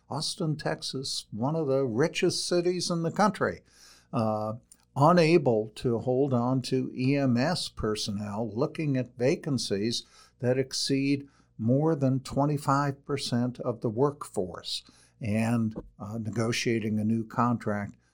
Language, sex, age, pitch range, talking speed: English, male, 60-79, 110-145 Hz, 115 wpm